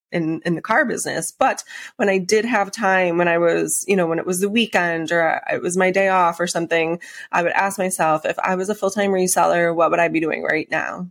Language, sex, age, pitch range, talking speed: English, female, 20-39, 170-200 Hz, 250 wpm